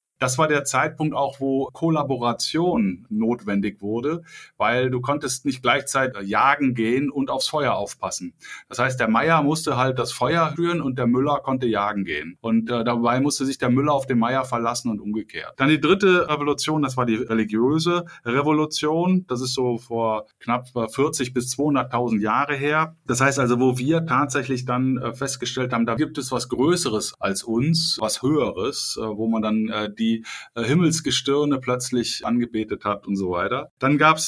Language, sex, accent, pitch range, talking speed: German, male, German, 115-150 Hz, 180 wpm